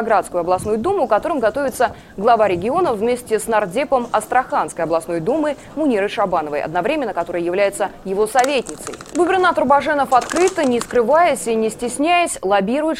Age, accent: 20-39, native